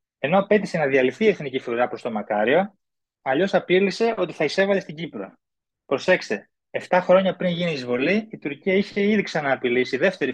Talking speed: 175 wpm